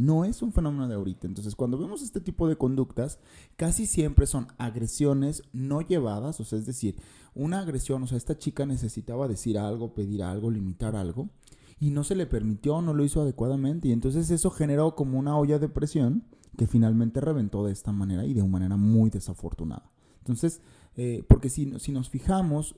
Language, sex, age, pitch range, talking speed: Spanish, male, 30-49, 100-140 Hz, 190 wpm